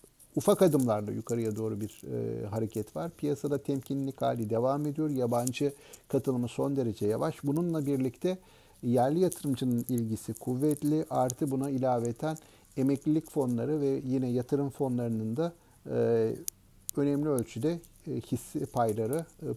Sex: male